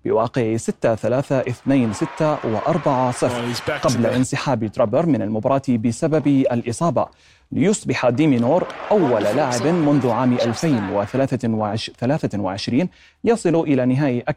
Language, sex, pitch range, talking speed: Arabic, male, 115-135 Hz, 100 wpm